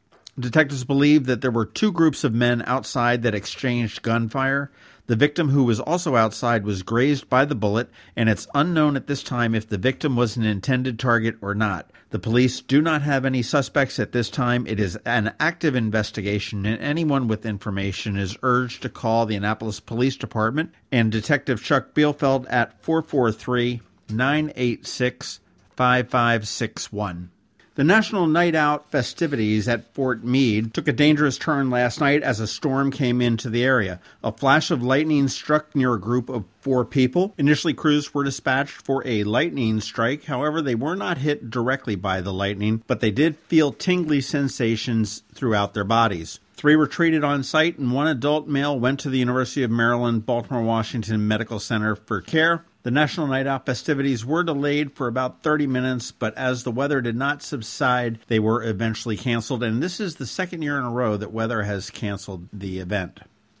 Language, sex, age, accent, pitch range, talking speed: English, male, 50-69, American, 110-145 Hz, 175 wpm